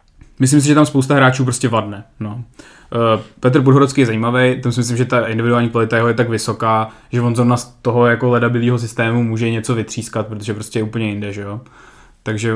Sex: male